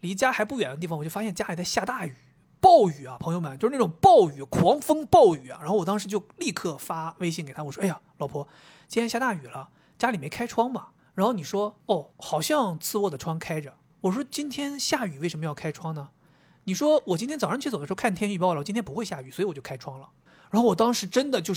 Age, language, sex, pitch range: 30-49, Chinese, male, 160-225 Hz